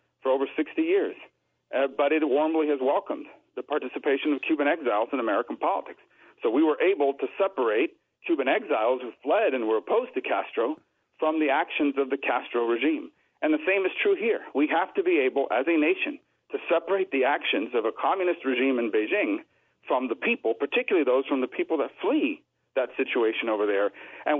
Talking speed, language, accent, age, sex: 195 wpm, English, American, 50-69, male